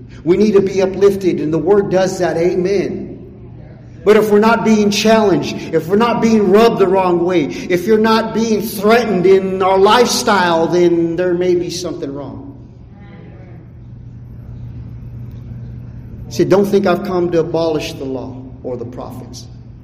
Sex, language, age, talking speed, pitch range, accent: male, English, 50-69, 155 wpm, 135-195 Hz, American